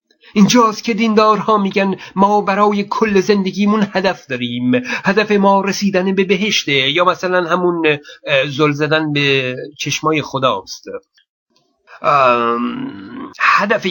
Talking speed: 100 wpm